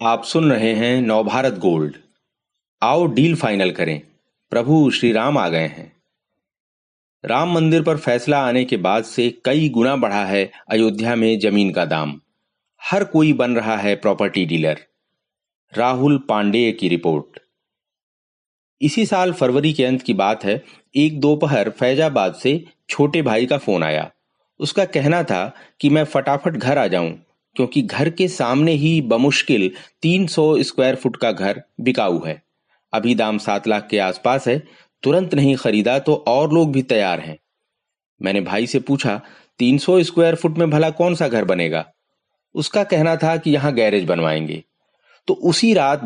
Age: 40-59